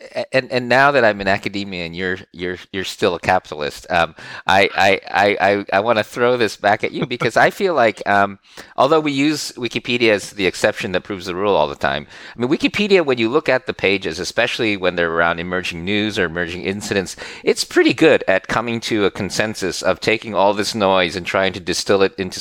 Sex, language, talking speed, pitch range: male, English, 220 wpm, 100-125 Hz